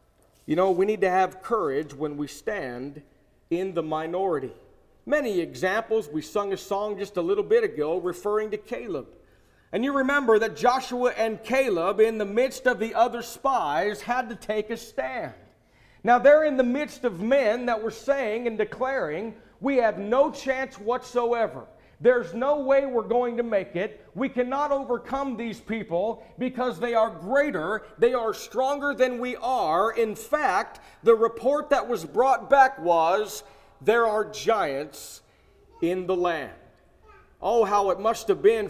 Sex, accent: male, American